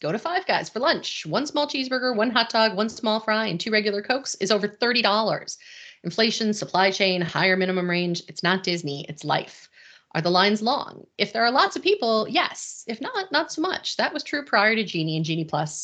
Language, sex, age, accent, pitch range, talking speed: English, female, 30-49, American, 180-255 Hz, 220 wpm